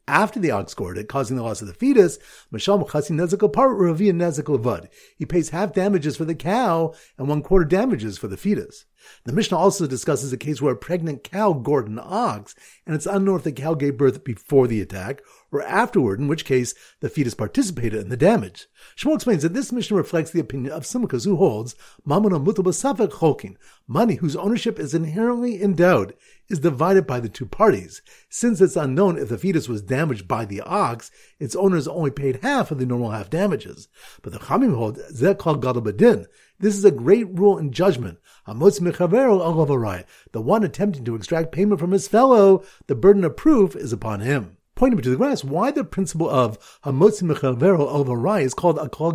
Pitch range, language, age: 135-200 Hz, English, 50-69